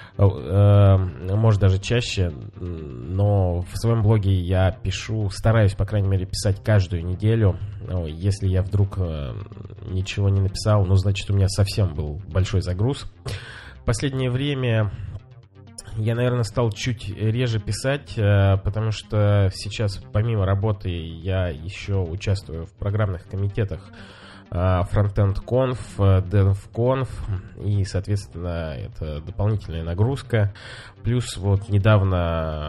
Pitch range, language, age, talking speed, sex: 95-110 Hz, Russian, 20-39, 110 wpm, male